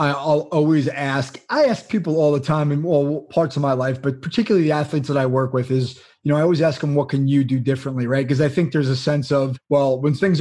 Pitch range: 145-175 Hz